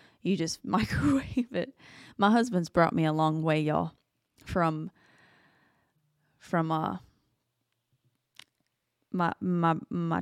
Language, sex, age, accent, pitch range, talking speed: English, female, 20-39, American, 170-200 Hz, 105 wpm